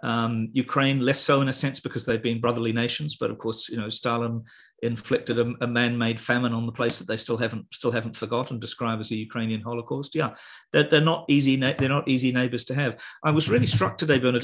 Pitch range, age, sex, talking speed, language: 110-130 Hz, 40-59, male, 230 wpm, English